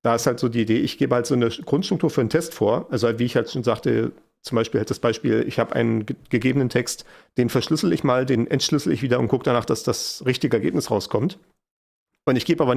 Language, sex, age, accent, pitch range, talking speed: German, male, 40-59, German, 120-150 Hz, 250 wpm